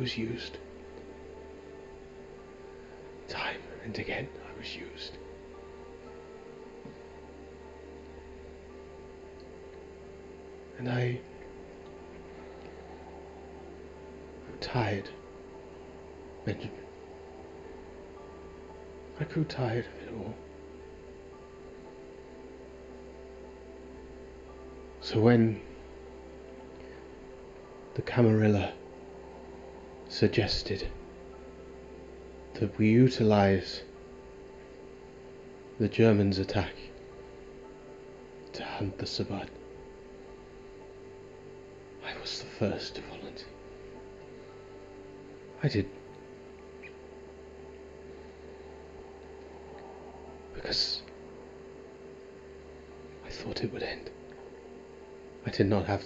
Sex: male